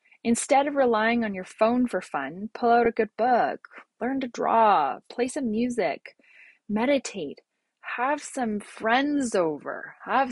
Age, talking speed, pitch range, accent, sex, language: 20-39, 145 wpm, 185-235 Hz, American, female, English